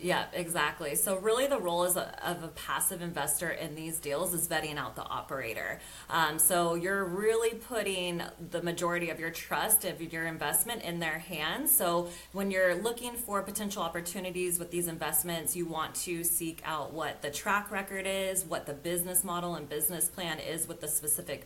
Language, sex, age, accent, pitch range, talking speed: English, female, 30-49, American, 155-185 Hz, 185 wpm